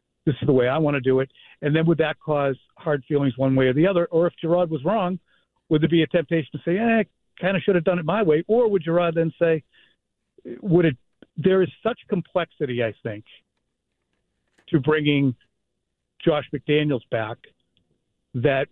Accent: American